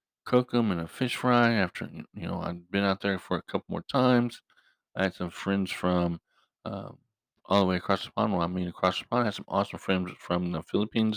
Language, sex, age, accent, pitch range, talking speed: English, male, 50-69, American, 90-110 Hz, 240 wpm